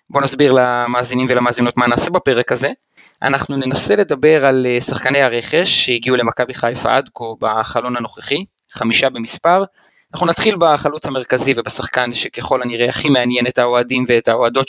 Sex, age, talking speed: male, 30-49, 145 wpm